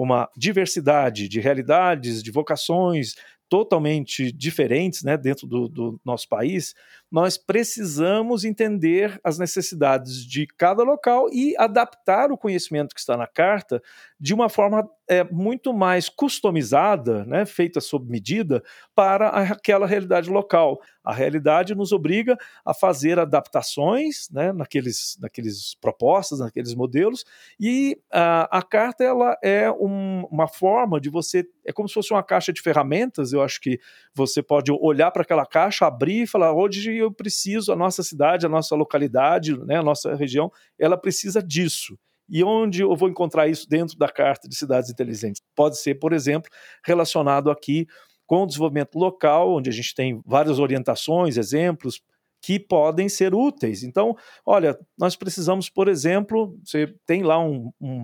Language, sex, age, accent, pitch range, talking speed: Portuguese, male, 50-69, Brazilian, 145-195 Hz, 150 wpm